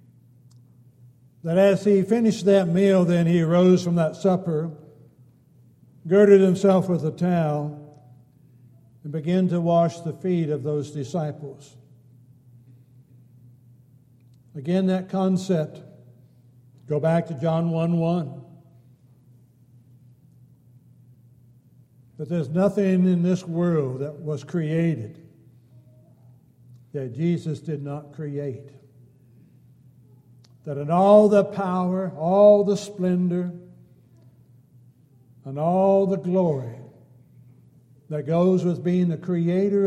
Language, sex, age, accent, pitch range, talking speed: English, male, 60-79, American, 125-170 Hz, 100 wpm